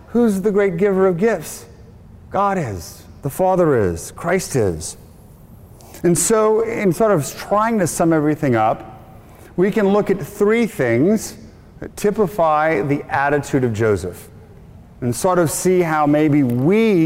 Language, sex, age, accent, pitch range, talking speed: English, male, 40-59, American, 135-180 Hz, 150 wpm